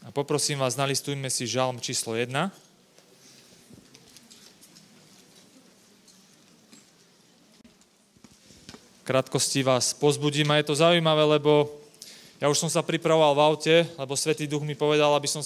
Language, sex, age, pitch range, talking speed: Slovak, male, 20-39, 135-155 Hz, 115 wpm